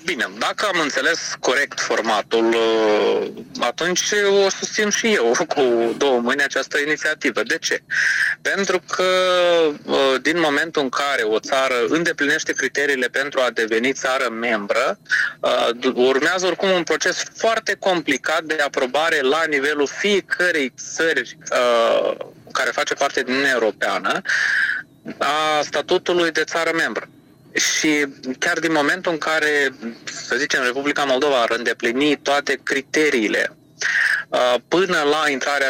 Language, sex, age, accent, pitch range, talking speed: Romanian, male, 20-39, native, 130-180 Hz, 120 wpm